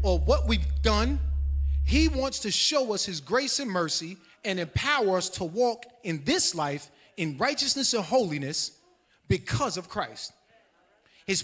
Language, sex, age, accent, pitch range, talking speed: English, male, 30-49, American, 175-240 Hz, 150 wpm